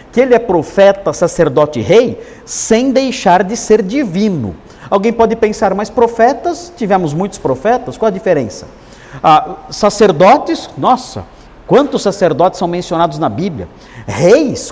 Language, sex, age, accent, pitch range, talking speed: Portuguese, male, 50-69, Brazilian, 175-225 Hz, 130 wpm